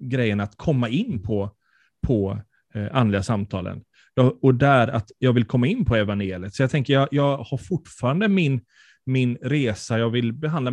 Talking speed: 175 wpm